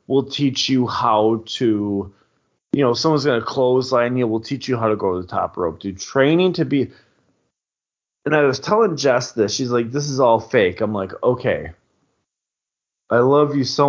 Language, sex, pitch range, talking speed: English, male, 110-140 Hz, 195 wpm